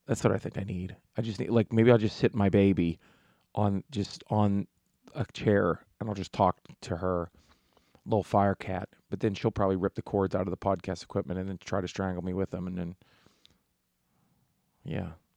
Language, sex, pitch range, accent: English, male, 95-115 Hz, American